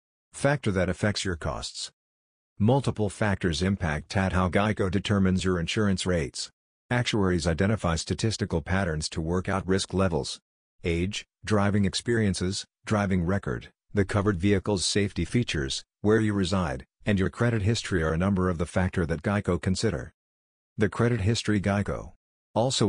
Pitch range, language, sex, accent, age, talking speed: 90-105 Hz, English, male, American, 50-69, 145 wpm